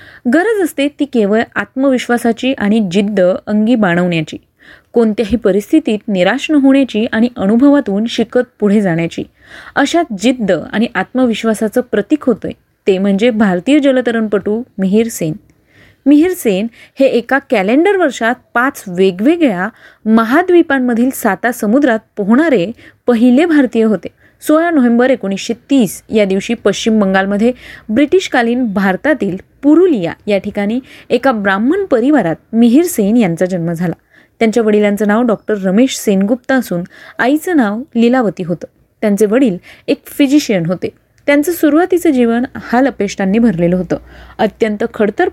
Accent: native